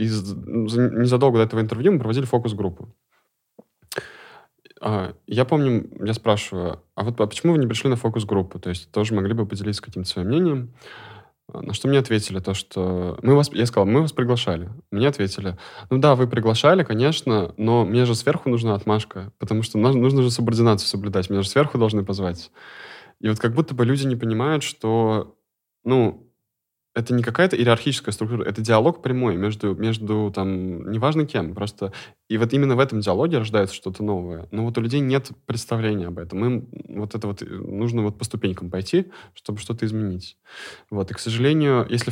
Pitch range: 100-120 Hz